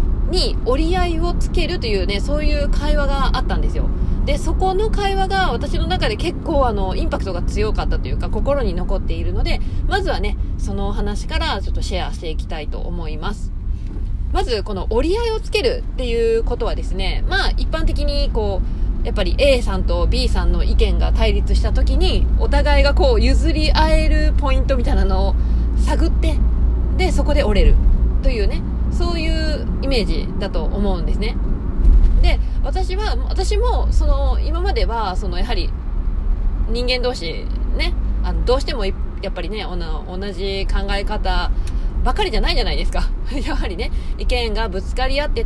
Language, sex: Japanese, female